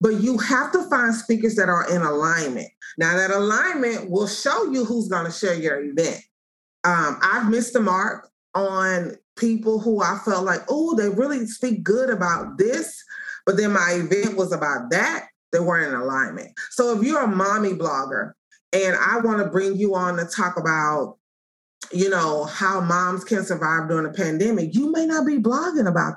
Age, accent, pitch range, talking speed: 30-49, American, 170-225 Hz, 190 wpm